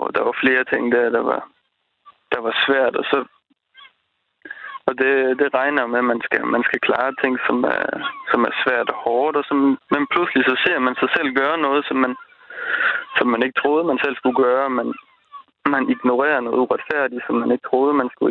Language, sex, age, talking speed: Danish, male, 20-39, 205 wpm